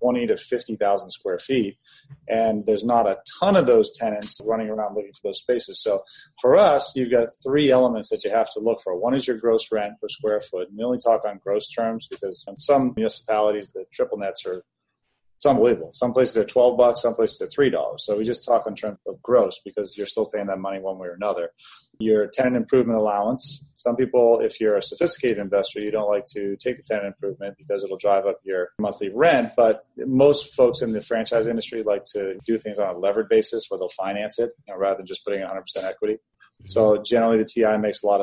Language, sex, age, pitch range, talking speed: English, male, 30-49, 105-145 Hz, 225 wpm